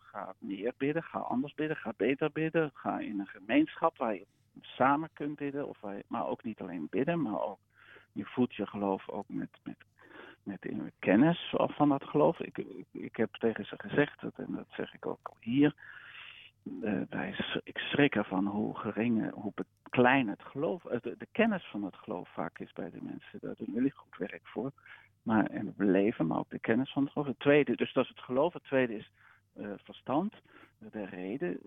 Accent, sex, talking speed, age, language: Dutch, male, 200 wpm, 50-69, Dutch